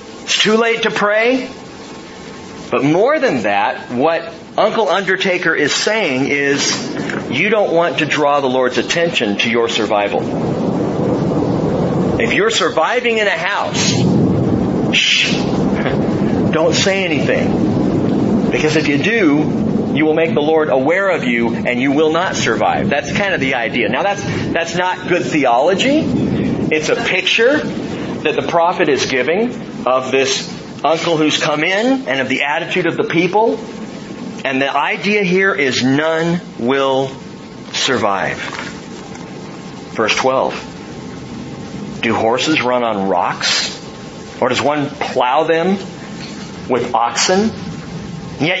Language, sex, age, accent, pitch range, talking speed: English, male, 40-59, American, 135-205 Hz, 135 wpm